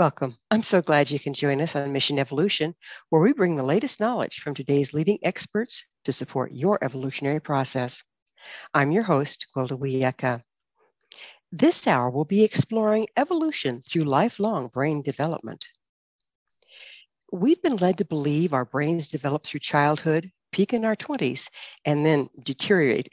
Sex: female